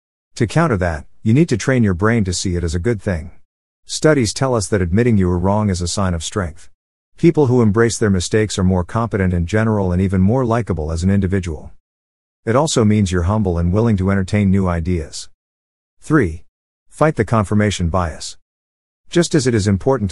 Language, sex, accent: English, male, American